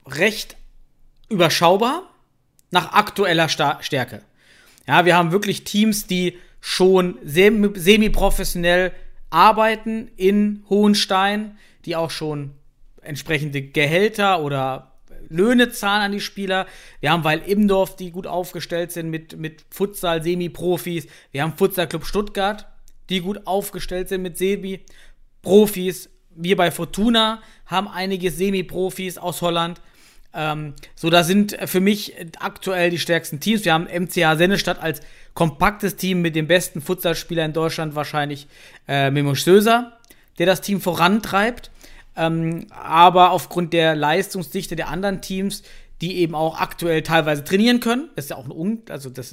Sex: male